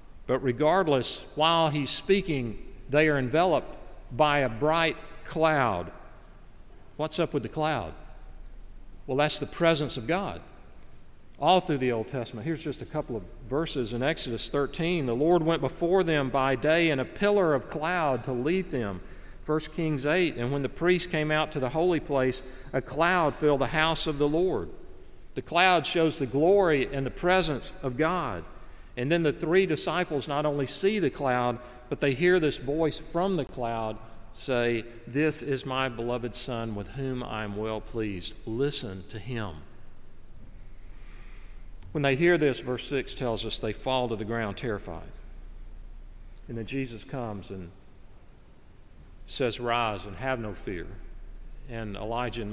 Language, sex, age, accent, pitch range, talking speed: English, male, 50-69, American, 110-155 Hz, 165 wpm